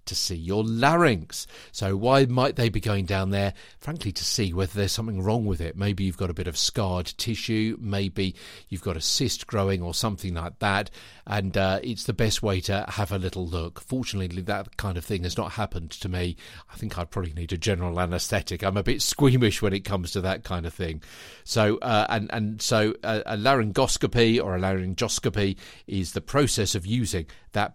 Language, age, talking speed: English, 50-69, 210 wpm